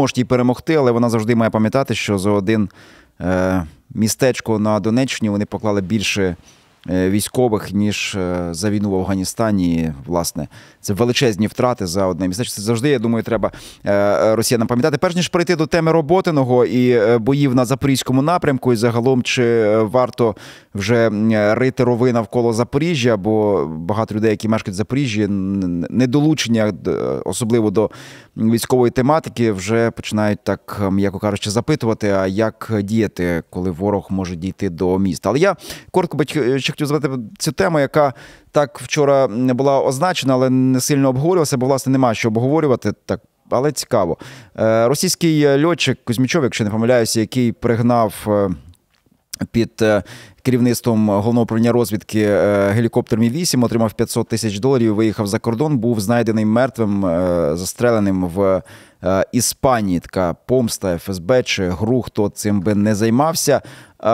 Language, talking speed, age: Ukrainian, 140 wpm, 30-49